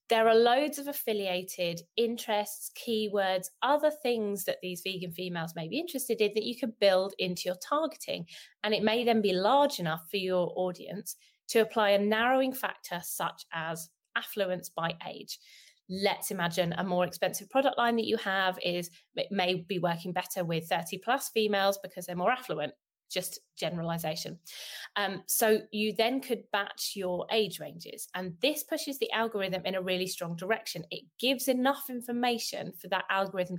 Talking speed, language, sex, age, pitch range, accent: 170 wpm, English, female, 20-39, 180-235 Hz, British